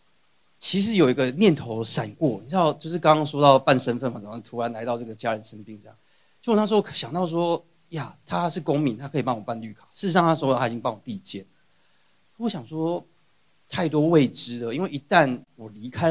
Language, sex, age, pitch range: Chinese, male, 30-49, 120-165 Hz